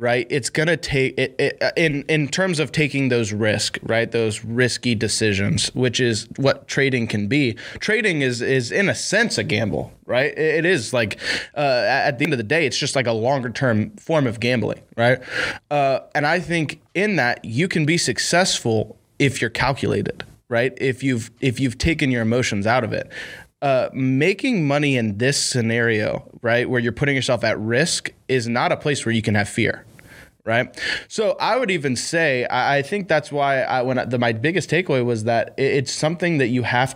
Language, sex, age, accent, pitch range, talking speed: English, male, 20-39, American, 115-150 Hz, 195 wpm